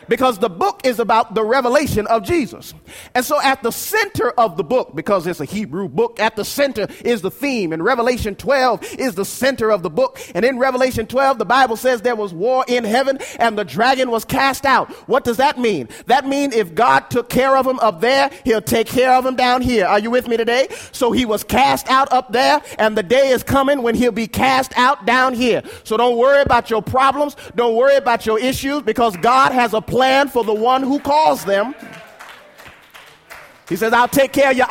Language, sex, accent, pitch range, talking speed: English, male, American, 225-270 Hz, 225 wpm